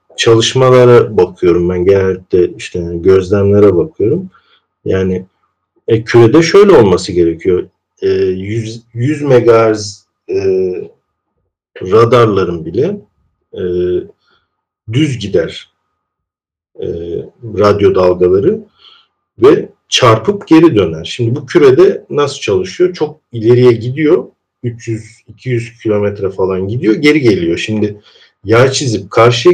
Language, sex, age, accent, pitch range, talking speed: Turkish, male, 50-69, native, 105-170 Hz, 85 wpm